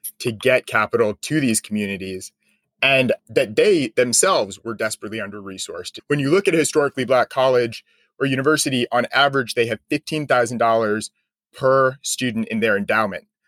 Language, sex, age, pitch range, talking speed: English, male, 30-49, 115-150 Hz, 150 wpm